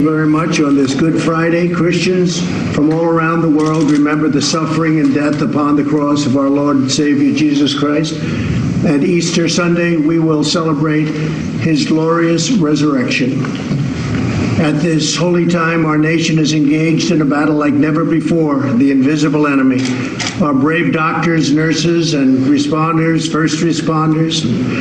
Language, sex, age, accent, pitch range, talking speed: English, male, 60-79, American, 150-165 Hz, 150 wpm